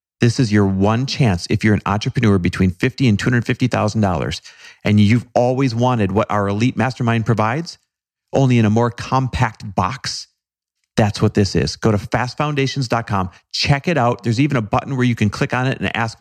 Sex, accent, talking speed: male, American, 185 wpm